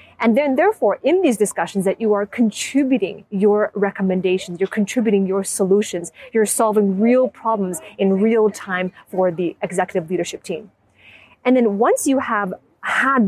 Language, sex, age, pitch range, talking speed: English, female, 30-49, 190-235 Hz, 155 wpm